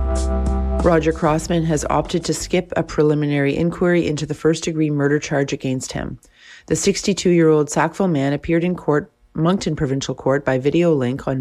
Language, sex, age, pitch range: English, female, 30-49, 130-160 Hz